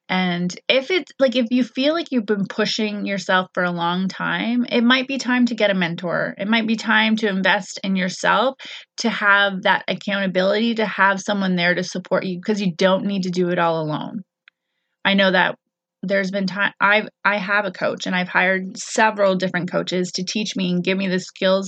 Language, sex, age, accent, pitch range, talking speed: English, female, 20-39, American, 185-220 Hz, 215 wpm